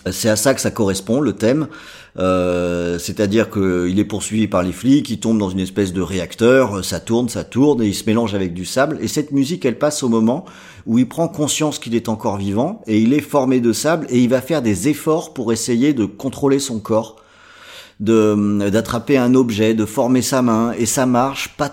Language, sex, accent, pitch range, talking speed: French, male, French, 110-145 Hz, 220 wpm